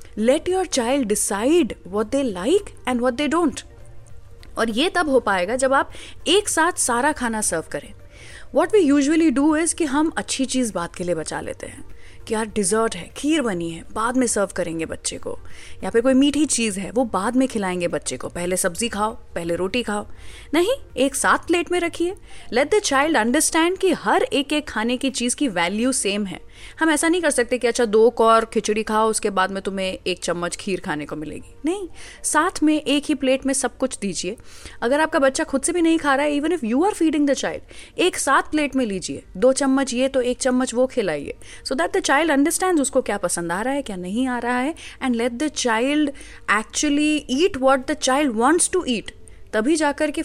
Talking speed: 220 wpm